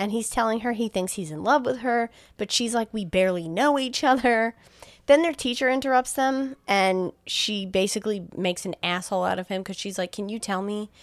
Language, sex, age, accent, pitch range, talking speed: English, female, 20-39, American, 175-225 Hz, 220 wpm